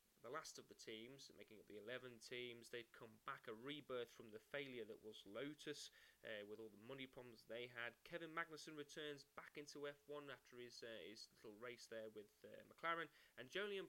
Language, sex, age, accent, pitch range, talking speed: English, male, 10-29, British, 115-150 Hz, 205 wpm